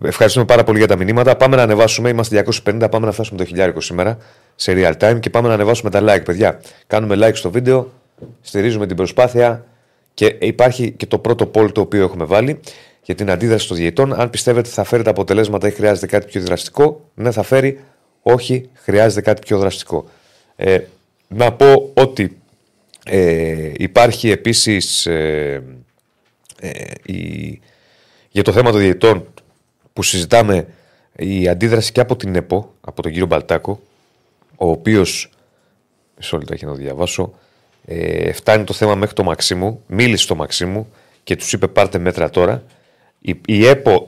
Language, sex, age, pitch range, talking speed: Greek, male, 30-49, 95-125 Hz, 165 wpm